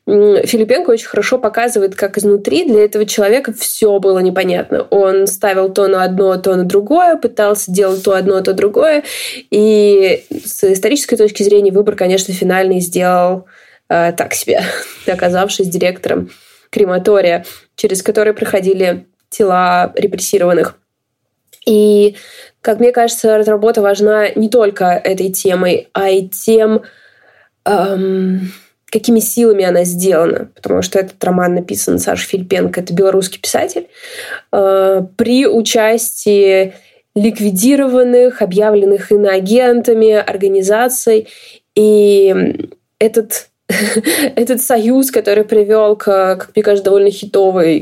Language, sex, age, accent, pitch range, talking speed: Russian, female, 20-39, native, 190-225 Hz, 120 wpm